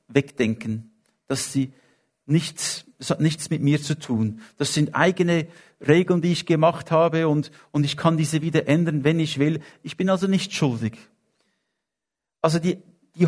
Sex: male